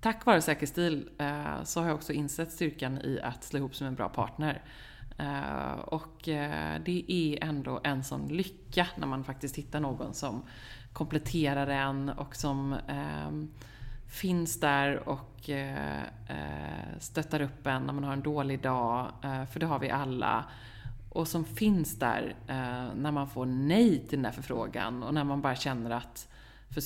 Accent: native